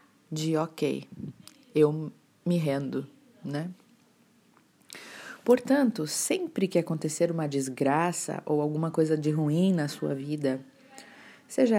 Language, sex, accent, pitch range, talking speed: Portuguese, female, Brazilian, 150-180 Hz, 105 wpm